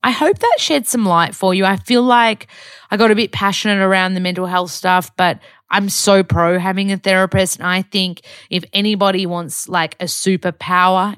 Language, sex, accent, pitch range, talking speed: English, female, Australian, 160-200 Hz, 200 wpm